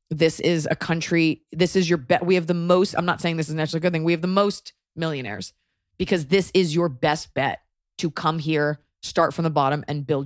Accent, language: American, English